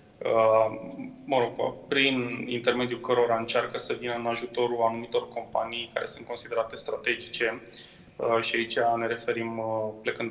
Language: Romanian